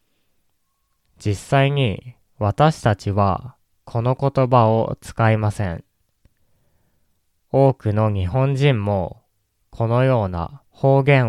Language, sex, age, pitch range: Japanese, male, 20-39, 95-125 Hz